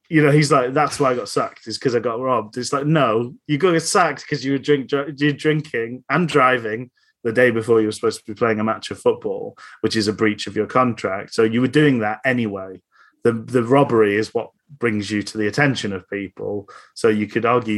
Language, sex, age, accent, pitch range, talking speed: English, male, 30-49, British, 110-145 Hz, 235 wpm